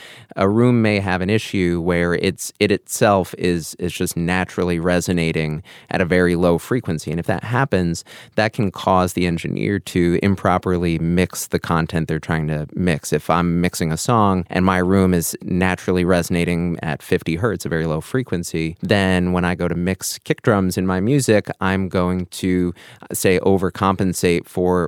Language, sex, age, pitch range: English, male, 30-49, 85-95 Hz